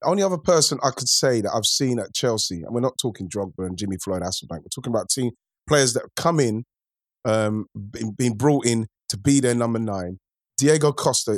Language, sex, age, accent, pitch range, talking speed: English, male, 30-49, British, 115-145 Hz, 220 wpm